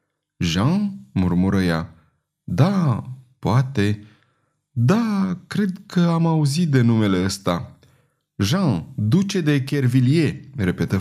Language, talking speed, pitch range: Romanian, 100 wpm, 105-150 Hz